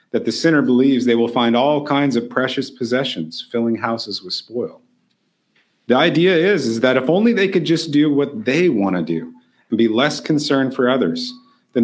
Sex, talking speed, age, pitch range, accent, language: male, 200 wpm, 40-59, 115-150 Hz, American, English